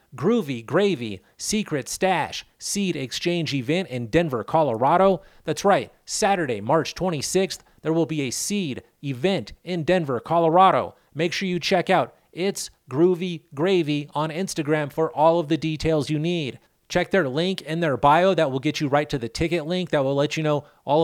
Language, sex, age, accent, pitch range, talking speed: English, male, 30-49, American, 140-175 Hz, 175 wpm